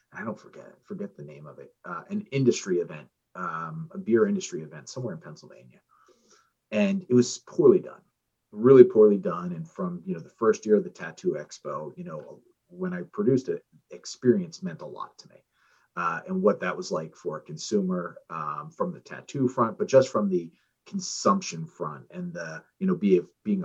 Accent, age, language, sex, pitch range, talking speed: American, 30-49, English, male, 130-195 Hz, 200 wpm